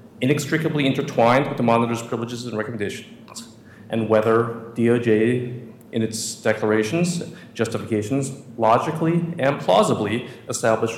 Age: 40-59